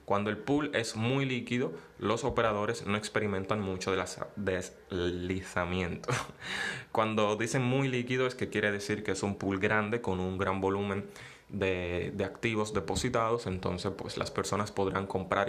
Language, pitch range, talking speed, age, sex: Spanish, 100-120 Hz, 155 wpm, 20-39, male